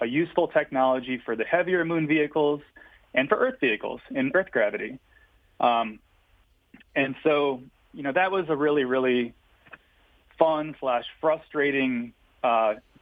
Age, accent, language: 30-49, American, English